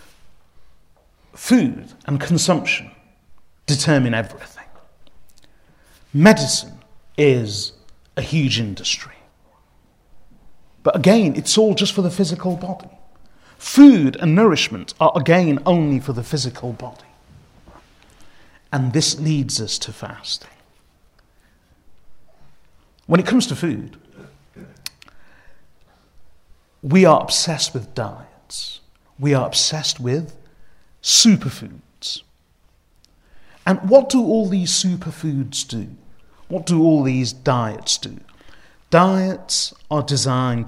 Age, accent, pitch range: 50-69, British, 105-170 Hz